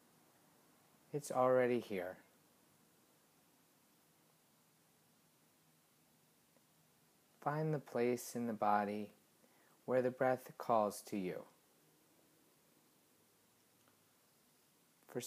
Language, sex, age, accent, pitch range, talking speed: English, male, 30-49, American, 110-130 Hz, 65 wpm